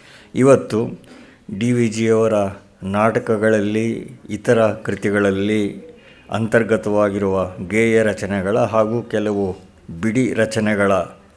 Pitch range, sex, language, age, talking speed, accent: 105-120 Hz, male, Kannada, 60-79, 75 wpm, native